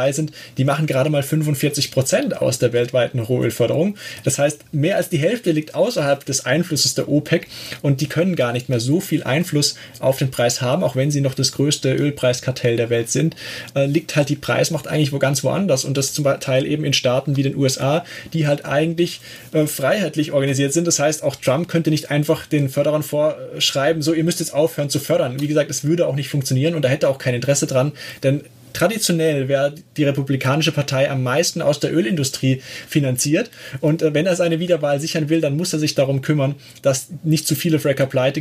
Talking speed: 210 wpm